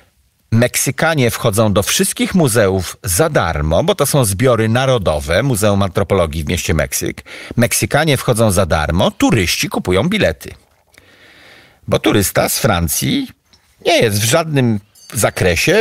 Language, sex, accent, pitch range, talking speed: Polish, male, native, 95-130 Hz, 125 wpm